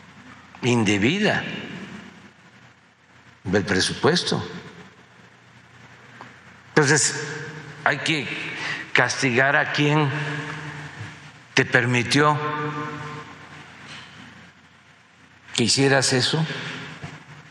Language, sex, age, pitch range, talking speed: Spanish, male, 60-79, 125-155 Hz, 50 wpm